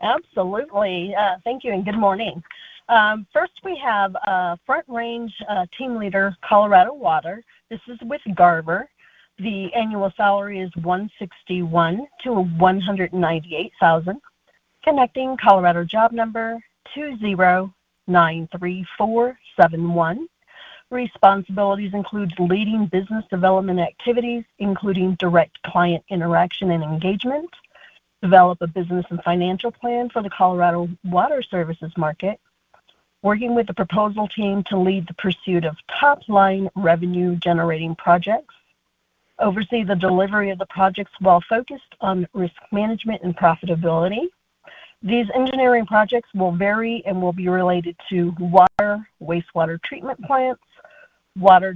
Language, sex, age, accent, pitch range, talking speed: English, female, 40-59, American, 180-225 Hz, 115 wpm